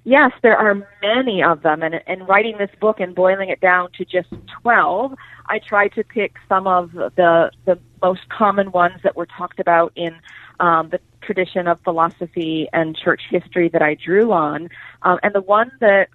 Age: 40-59